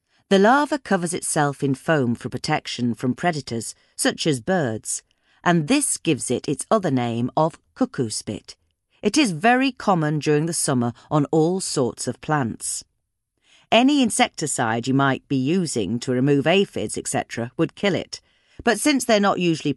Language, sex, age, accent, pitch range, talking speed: English, female, 40-59, British, 120-185 Hz, 160 wpm